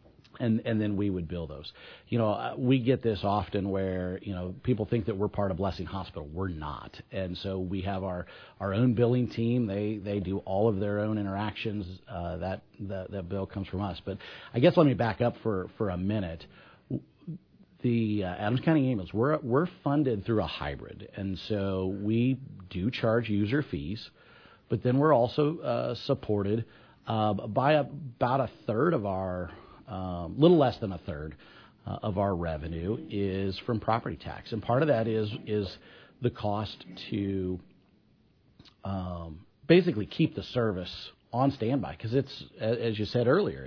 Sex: male